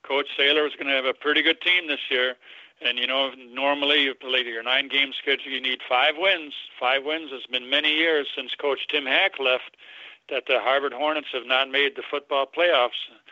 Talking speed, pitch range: 215 wpm, 130-150 Hz